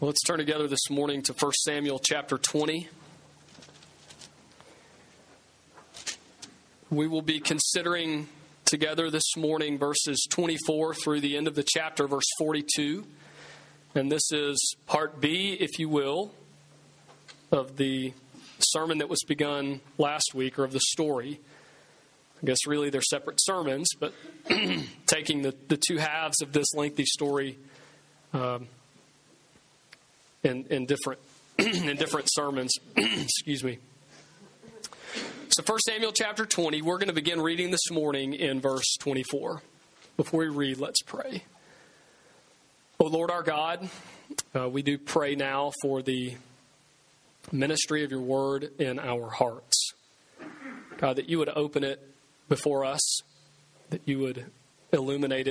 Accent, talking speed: American, 135 wpm